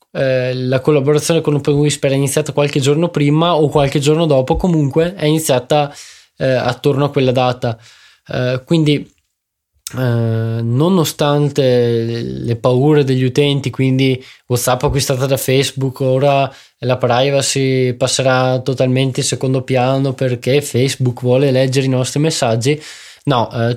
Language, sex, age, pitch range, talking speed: Italian, male, 20-39, 125-145 Hz, 135 wpm